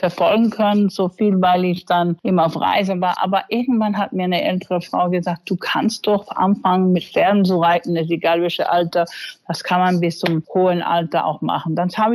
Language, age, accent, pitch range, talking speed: German, 50-69, German, 175-210 Hz, 210 wpm